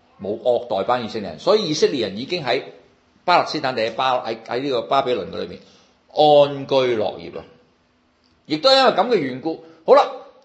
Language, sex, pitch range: Chinese, male, 95-155 Hz